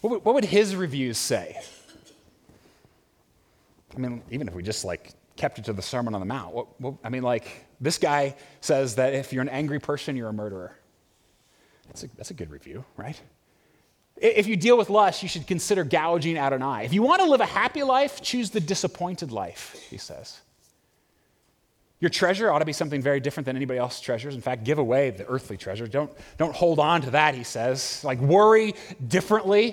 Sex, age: male, 30-49